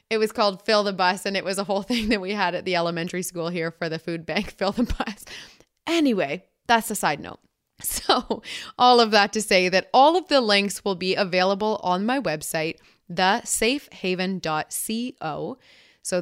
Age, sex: 20-39, female